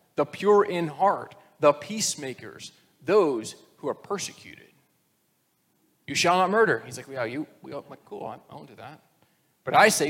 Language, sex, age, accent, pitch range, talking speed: English, male, 30-49, American, 150-195 Hz, 170 wpm